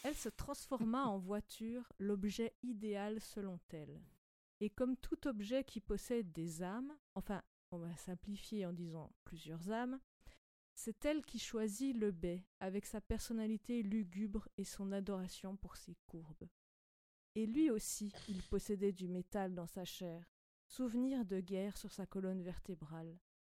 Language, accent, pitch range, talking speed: French, French, 190-230 Hz, 150 wpm